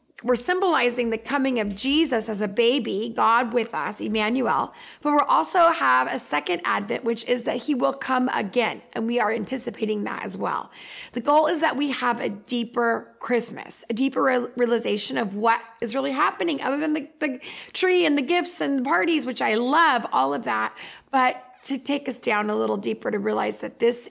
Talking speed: 200 wpm